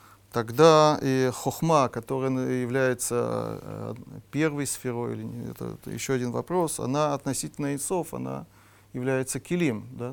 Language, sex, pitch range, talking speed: Russian, male, 110-135 Hz, 120 wpm